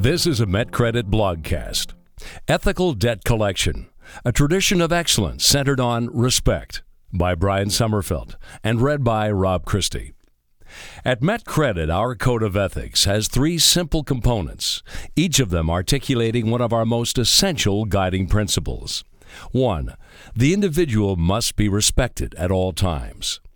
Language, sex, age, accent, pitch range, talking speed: English, male, 60-79, American, 95-130 Hz, 135 wpm